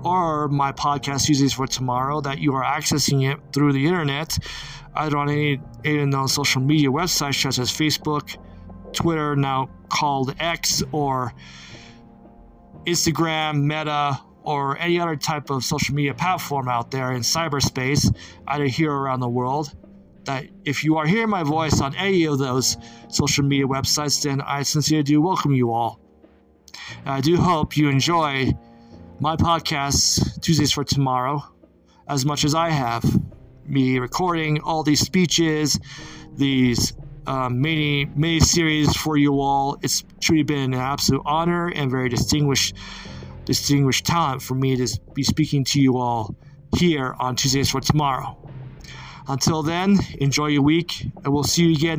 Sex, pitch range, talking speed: male, 130-155 Hz, 150 wpm